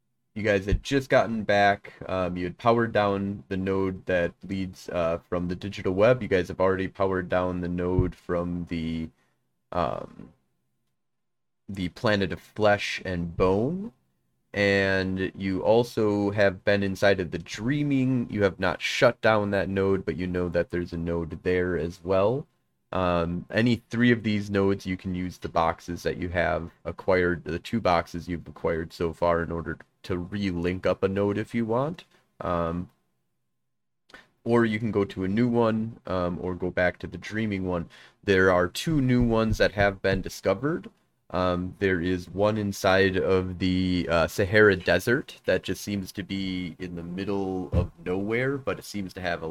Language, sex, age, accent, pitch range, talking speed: English, male, 30-49, American, 90-100 Hz, 180 wpm